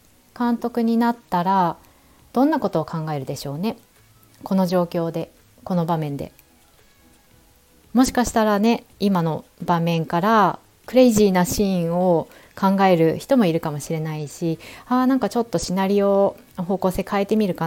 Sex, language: female, Japanese